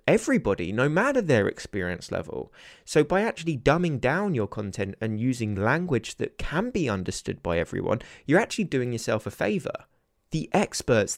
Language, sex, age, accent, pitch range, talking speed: English, male, 20-39, British, 110-155 Hz, 160 wpm